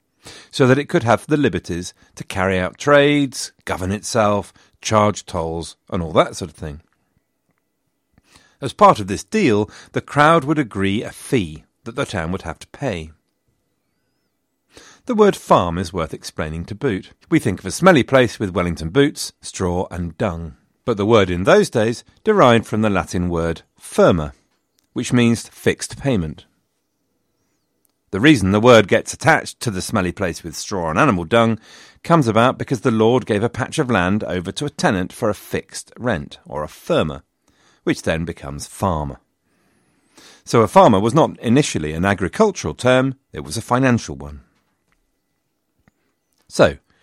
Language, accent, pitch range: English, British, 90-125 Hz